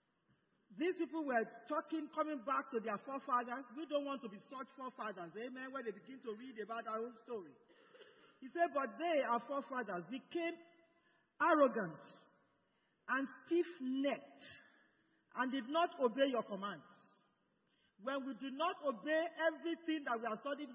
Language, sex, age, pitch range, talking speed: English, male, 40-59, 225-305 Hz, 150 wpm